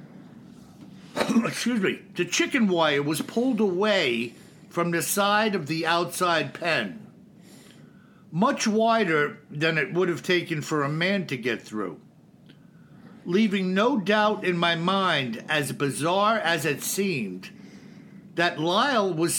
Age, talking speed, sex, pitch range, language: 60-79, 130 wpm, male, 170-210 Hz, English